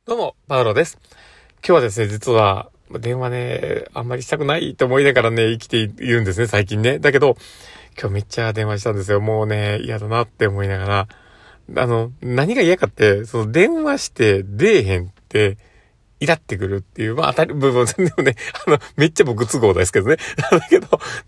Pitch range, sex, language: 105-135 Hz, male, Japanese